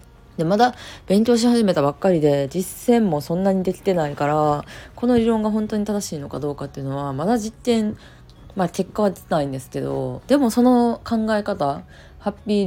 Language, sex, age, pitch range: Japanese, female, 20-39, 140-205 Hz